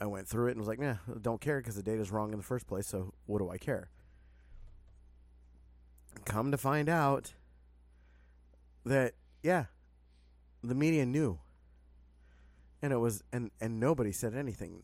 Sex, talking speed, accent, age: male, 165 wpm, American, 20-39